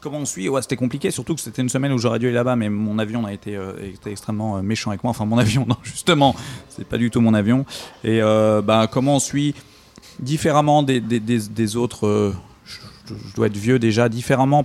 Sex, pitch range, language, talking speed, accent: male, 100-120 Hz, French, 240 wpm, French